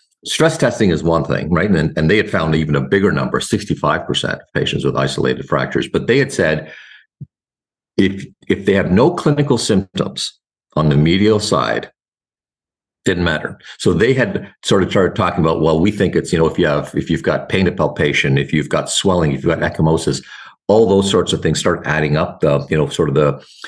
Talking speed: 215 wpm